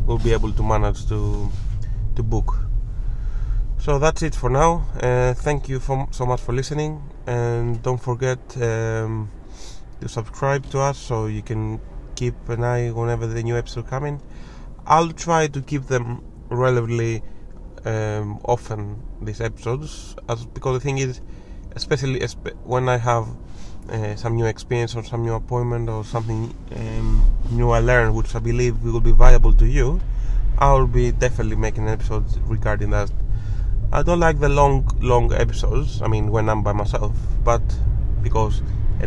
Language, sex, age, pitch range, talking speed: English, male, 20-39, 110-125 Hz, 160 wpm